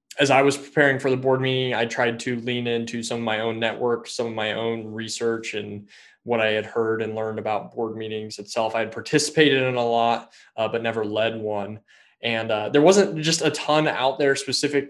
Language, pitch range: English, 115-135 Hz